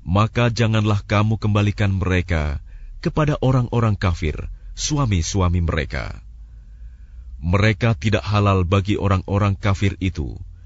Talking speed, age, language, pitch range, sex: 95 wpm, 30-49, Arabic, 90-115 Hz, male